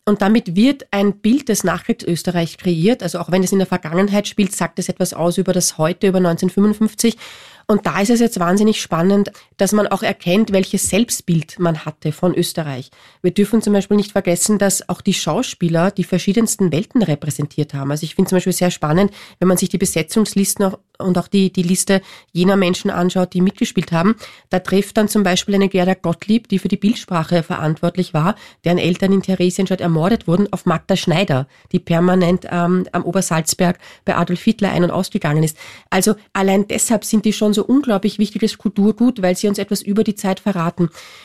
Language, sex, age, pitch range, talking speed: German, female, 30-49, 180-210 Hz, 200 wpm